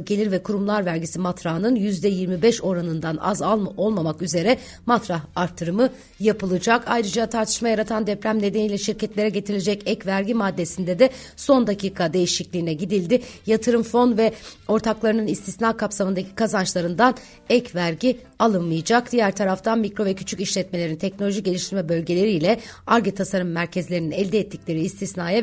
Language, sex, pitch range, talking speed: Turkish, female, 180-225 Hz, 130 wpm